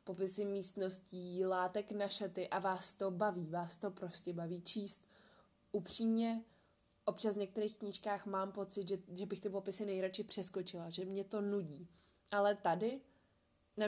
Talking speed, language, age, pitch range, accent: 150 wpm, Czech, 20-39, 185-210 Hz, native